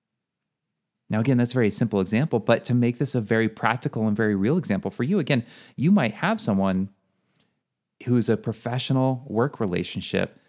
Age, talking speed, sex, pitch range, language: 30-49, 170 wpm, male, 100-125 Hz, English